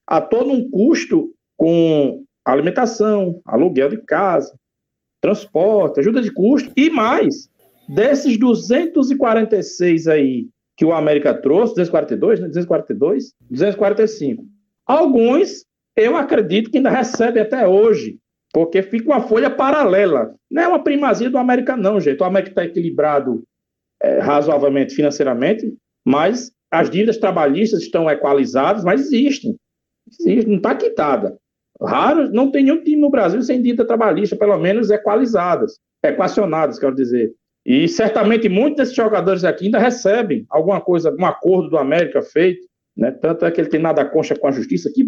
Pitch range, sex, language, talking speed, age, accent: 165-255 Hz, male, Portuguese, 145 wpm, 50-69, Brazilian